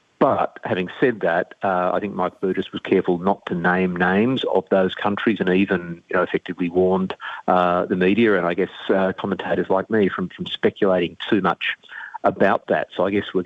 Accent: Australian